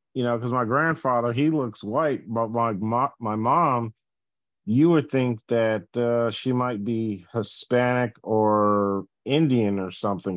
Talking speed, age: 150 wpm, 40-59